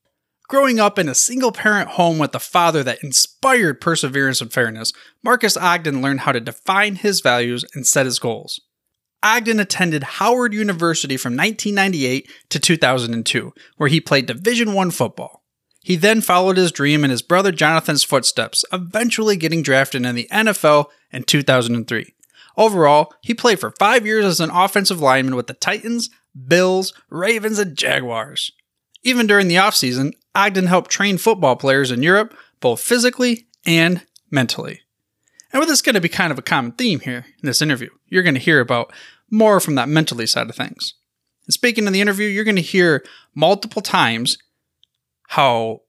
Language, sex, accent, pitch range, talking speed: English, male, American, 135-205 Hz, 170 wpm